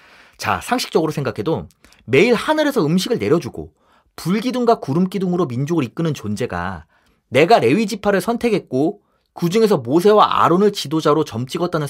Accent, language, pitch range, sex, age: native, Korean, 160-240 Hz, male, 30-49